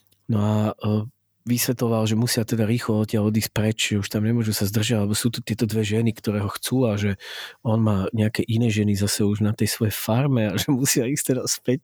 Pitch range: 105-115 Hz